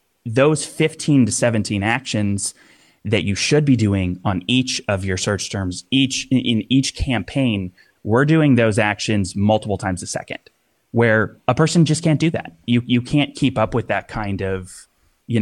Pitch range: 100-120 Hz